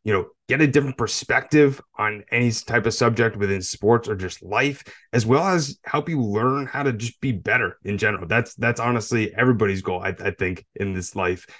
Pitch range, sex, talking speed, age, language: 100-125 Hz, male, 205 wpm, 30-49, English